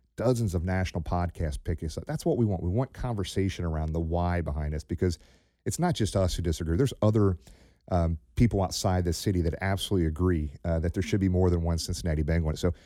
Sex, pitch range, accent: male, 85-100 Hz, American